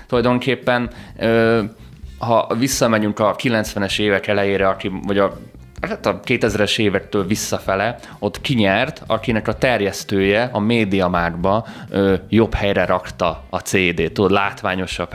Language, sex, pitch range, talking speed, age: Hungarian, male, 95-110 Hz, 100 wpm, 20-39